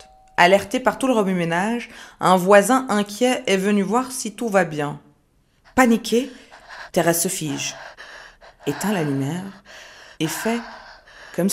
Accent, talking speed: French, 130 wpm